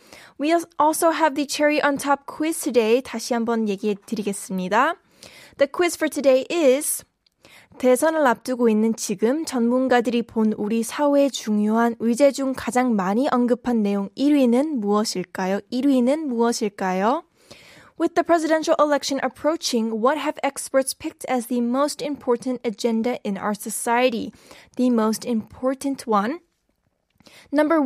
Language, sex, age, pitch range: Korean, female, 10-29, 230-290 Hz